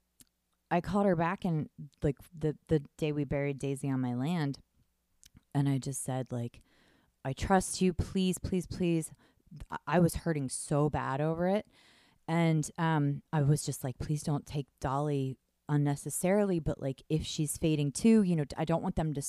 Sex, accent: female, American